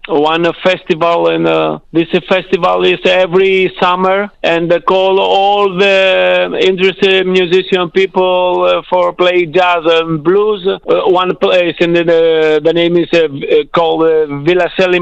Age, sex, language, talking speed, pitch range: 50-69, male, English, 155 wpm, 160-190 Hz